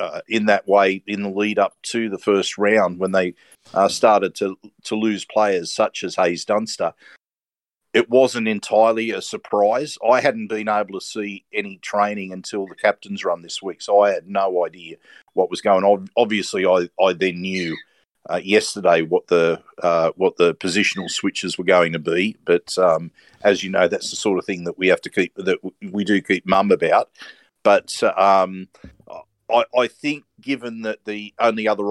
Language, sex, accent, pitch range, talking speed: English, male, Australian, 95-115 Hz, 190 wpm